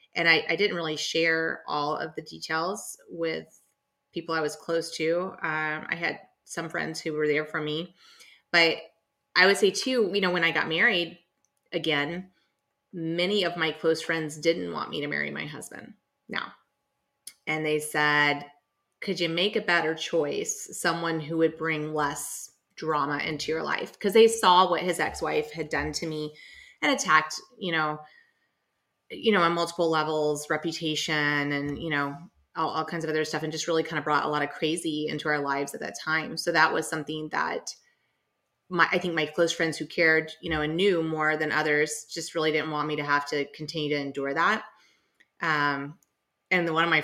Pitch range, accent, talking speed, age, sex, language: 150-170 Hz, American, 195 wpm, 30-49, female, English